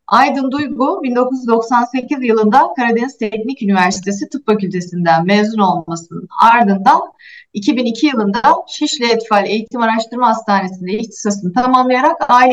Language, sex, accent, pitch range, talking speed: Turkish, female, native, 200-265 Hz, 105 wpm